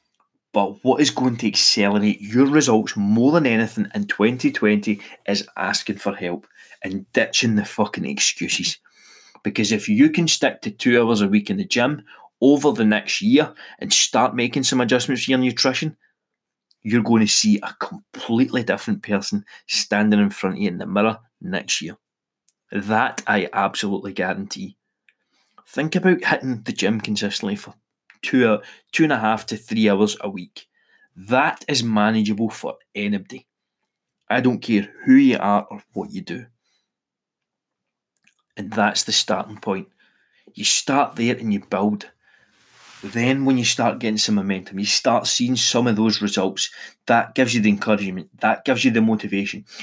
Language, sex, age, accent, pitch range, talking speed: English, male, 20-39, British, 105-130 Hz, 165 wpm